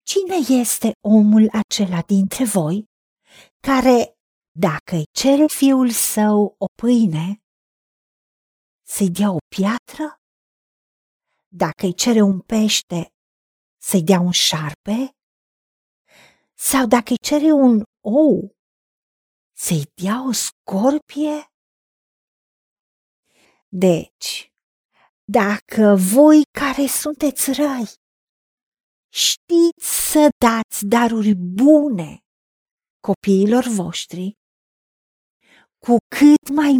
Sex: female